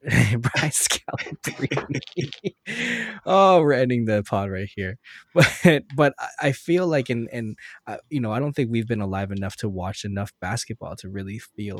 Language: English